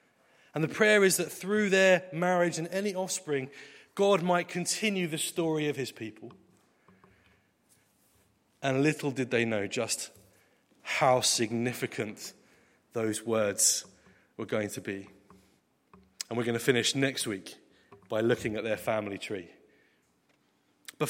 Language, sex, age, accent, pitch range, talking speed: English, male, 30-49, British, 120-165 Hz, 135 wpm